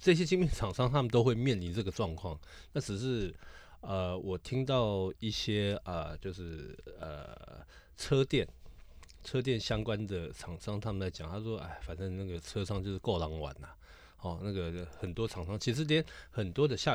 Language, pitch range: Chinese, 90-120 Hz